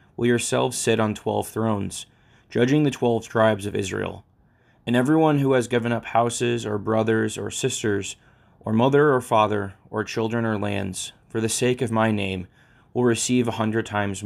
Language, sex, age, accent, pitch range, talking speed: English, male, 20-39, American, 110-125 Hz, 175 wpm